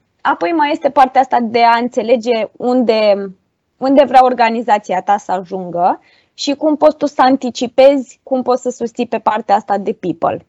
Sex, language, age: female, Romanian, 20-39